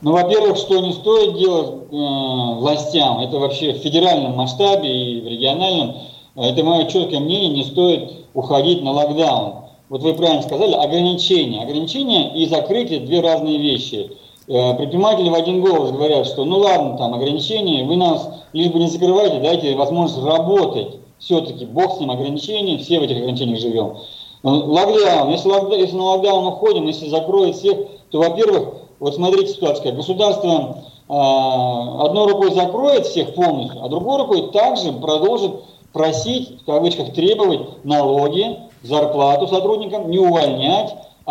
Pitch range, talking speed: 140-190 Hz, 150 wpm